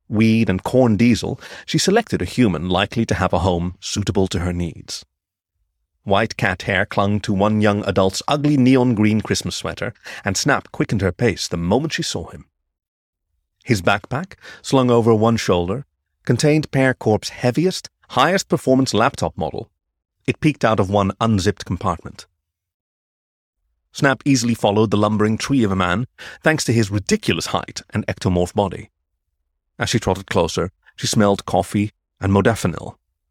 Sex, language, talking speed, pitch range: male, English, 155 wpm, 90-115 Hz